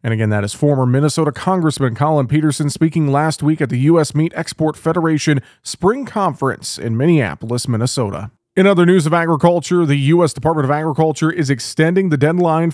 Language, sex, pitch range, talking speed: English, male, 135-160 Hz, 175 wpm